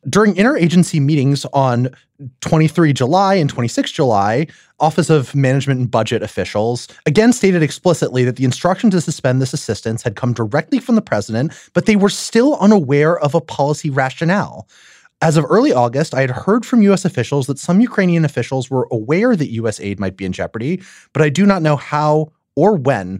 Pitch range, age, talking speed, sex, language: 120-185 Hz, 30-49, 185 wpm, male, English